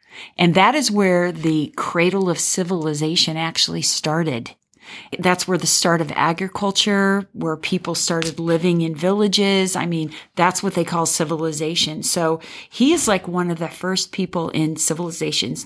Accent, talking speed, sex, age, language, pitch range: American, 155 wpm, female, 40-59, English, 165-200 Hz